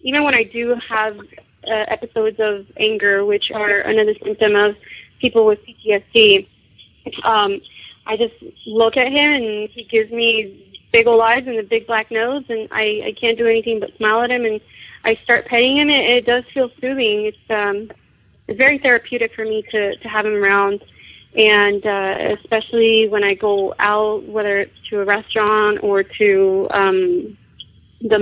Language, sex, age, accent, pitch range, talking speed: English, female, 30-49, American, 210-240 Hz, 175 wpm